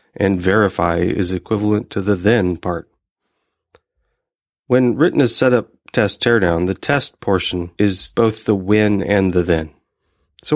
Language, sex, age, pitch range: English, male, 40-59, 95-125 Hz